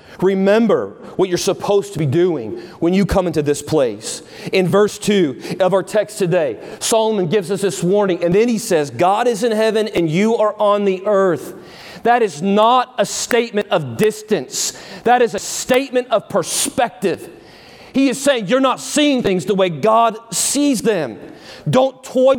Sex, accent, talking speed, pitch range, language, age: male, American, 175 wpm, 195-245 Hz, English, 40-59